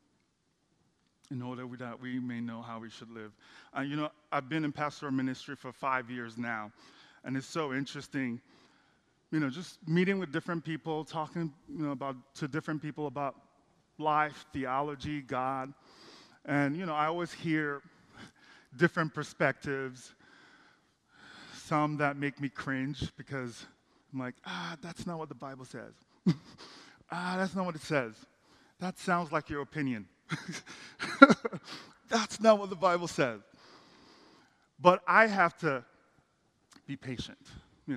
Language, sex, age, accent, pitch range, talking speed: English, male, 30-49, American, 130-160 Hz, 145 wpm